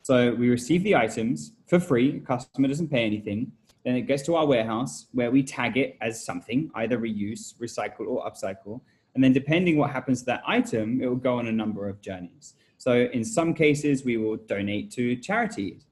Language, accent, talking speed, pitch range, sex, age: Filipino, British, 200 wpm, 110-135 Hz, male, 10-29